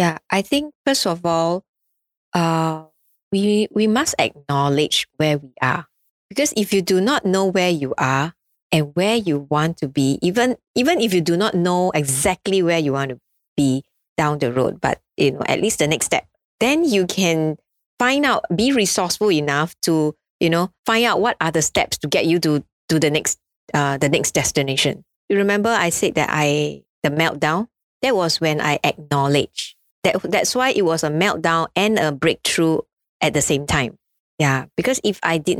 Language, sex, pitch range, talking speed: English, female, 150-200 Hz, 190 wpm